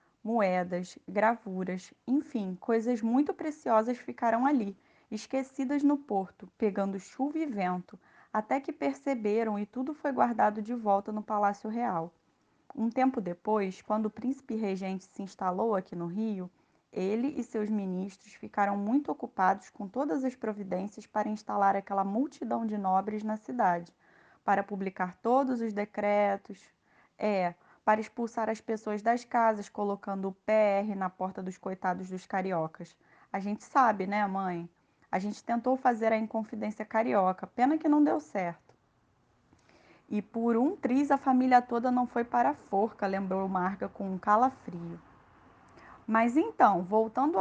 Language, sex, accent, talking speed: Portuguese, female, Brazilian, 145 wpm